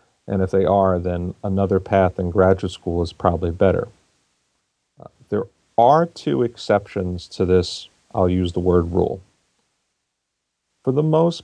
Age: 50-69